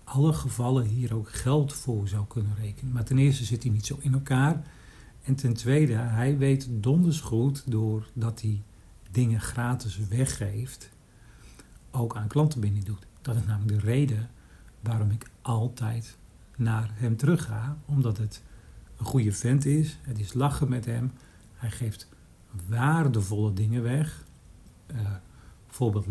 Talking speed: 150 wpm